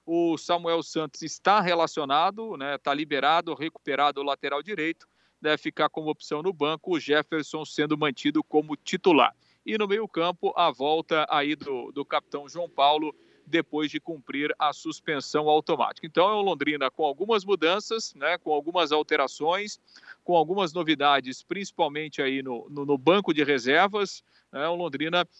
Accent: Brazilian